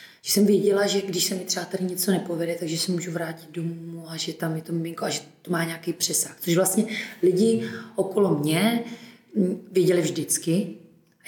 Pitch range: 165-185 Hz